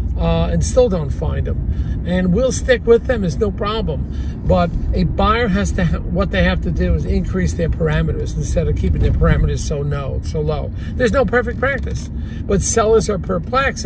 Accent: American